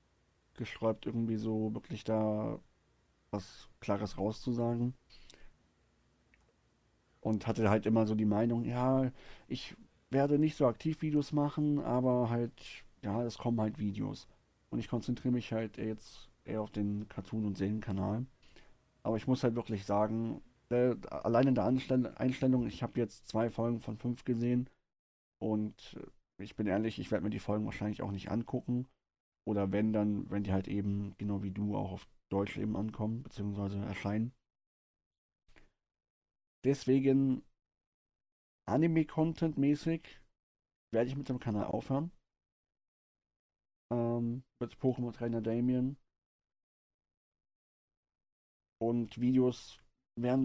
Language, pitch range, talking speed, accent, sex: German, 105-125 Hz, 125 wpm, German, male